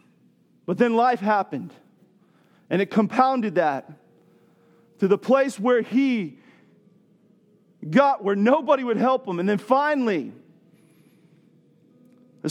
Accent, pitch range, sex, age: American, 210-260 Hz, male, 40-59